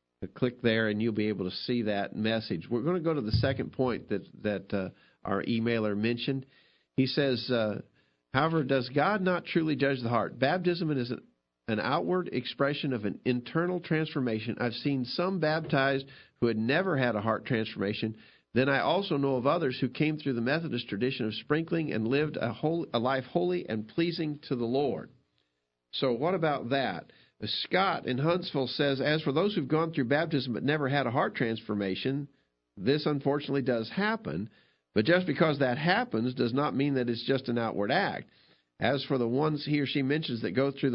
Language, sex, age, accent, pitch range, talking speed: English, male, 50-69, American, 115-145 Hz, 195 wpm